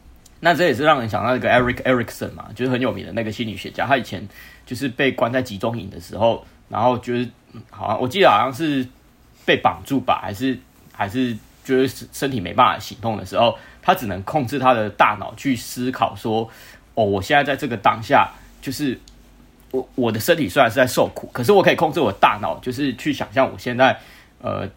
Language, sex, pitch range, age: Chinese, male, 105-130 Hz, 30-49